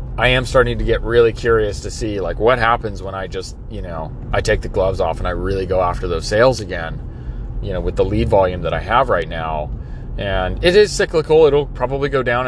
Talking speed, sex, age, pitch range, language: 235 wpm, male, 30-49, 100-120 Hz, English